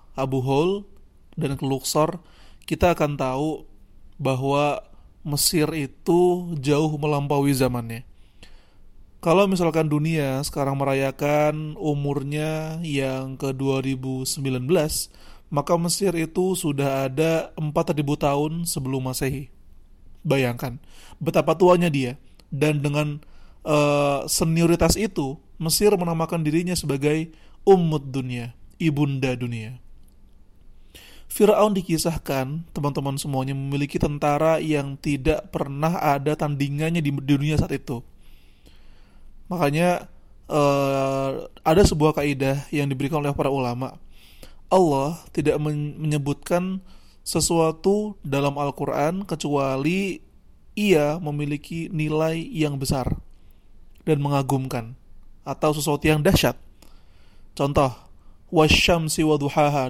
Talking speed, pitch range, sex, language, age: 95 wpm, 135-160 Hz, male, Indonesian, 30-49